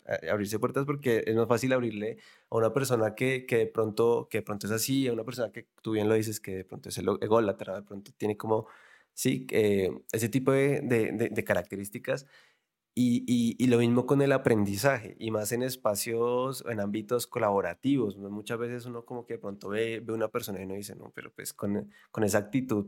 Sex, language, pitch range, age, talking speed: male, Spanish, 105-130 Hz, 20-39, 220 wpm